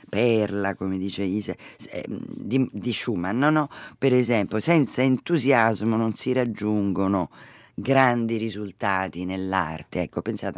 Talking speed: 120 wpm